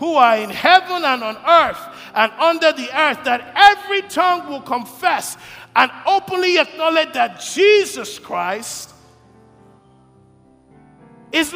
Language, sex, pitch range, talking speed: English, male, 225-320 Hz, 120 wpm